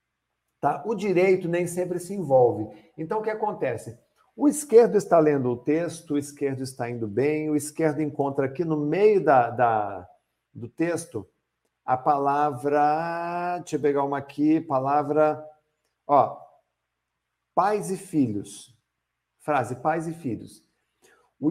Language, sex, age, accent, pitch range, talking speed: Portuguese, male, 50-69, Brazilian, 130-175 Hz, 135 wpm